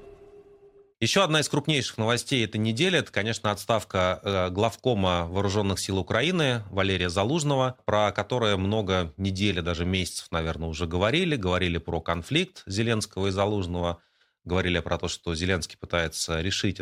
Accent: native